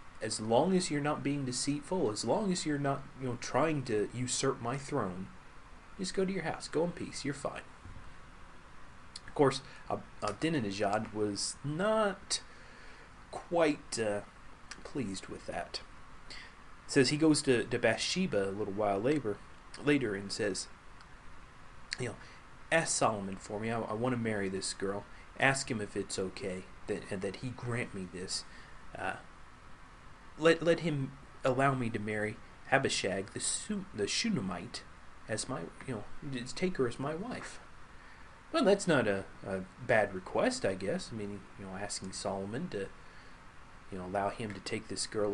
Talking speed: 165 wpm